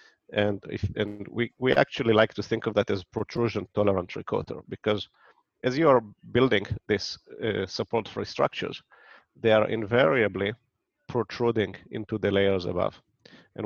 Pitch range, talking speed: 100-115 Hz, 150 wpm